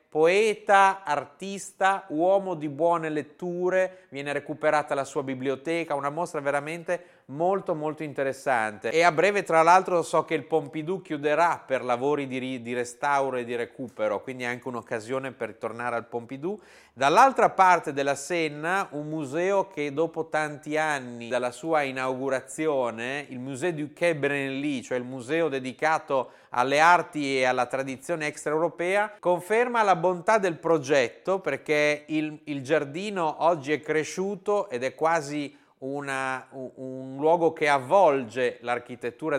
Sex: male